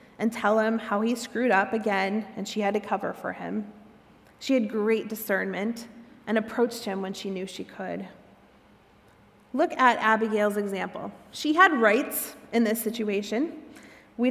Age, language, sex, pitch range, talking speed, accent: 30-49, English, female, 200-245 Hz, 160 wpm, American